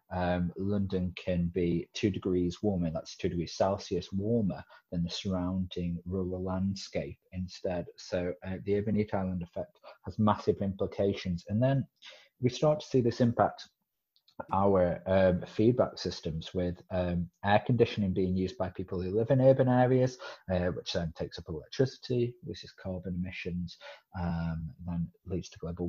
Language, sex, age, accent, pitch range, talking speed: English, male, 30-49, British, 90-105 Hz, 160 wpm